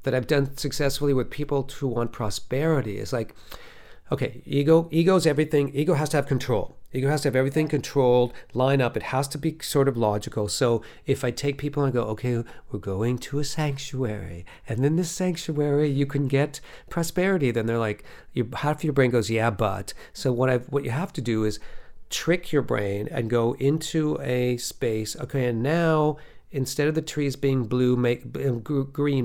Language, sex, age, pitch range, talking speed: English, male, 40-59, 125-150 Hz, 195 wpm